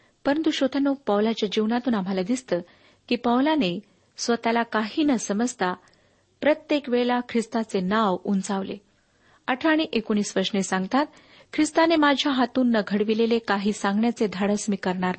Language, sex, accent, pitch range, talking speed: Marathi, female, native, 205-265 Hz, 125 wpm